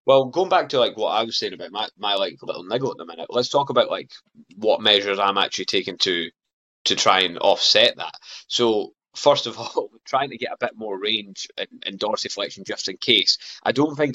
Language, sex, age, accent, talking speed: English, male, 20-39, British, 225 wpm